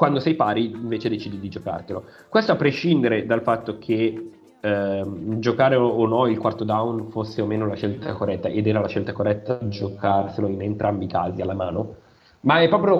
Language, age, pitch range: Italian, 30-49, 105-130 Hz